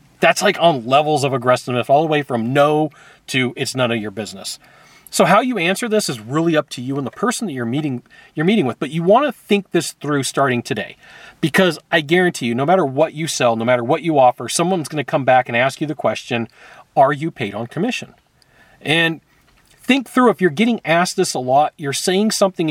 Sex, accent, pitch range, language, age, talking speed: male, American, 140-195 Hz, English, 40-59, 230 wpm